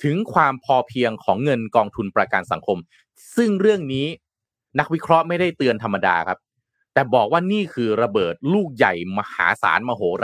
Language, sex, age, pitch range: Thai, male, 30-49, 120-185 Hz